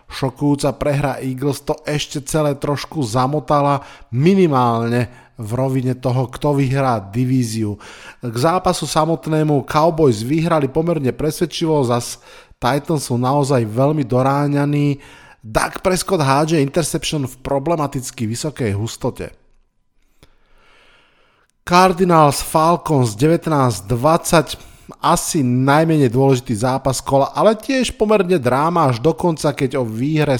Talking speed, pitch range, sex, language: 105 wpm, 125-155 Hz, male, Slovak